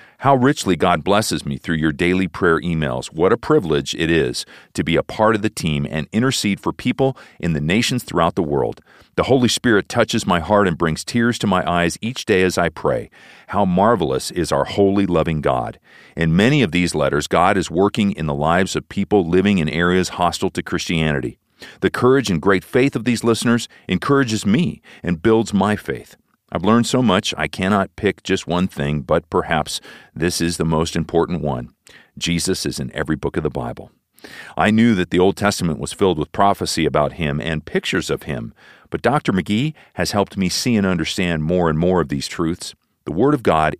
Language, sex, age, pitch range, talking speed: English, male, 40-59, 80-105 Hz, 205 wpm